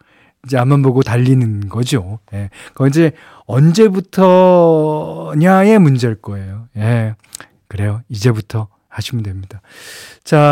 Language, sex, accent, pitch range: Korean, male, native, 110-150 Hz